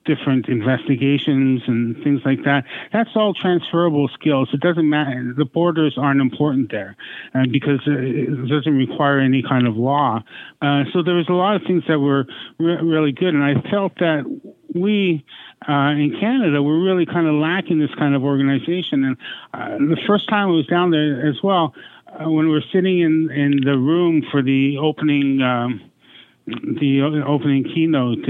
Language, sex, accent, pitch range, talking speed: English, male, American, 135-165 Hz, 175 wpm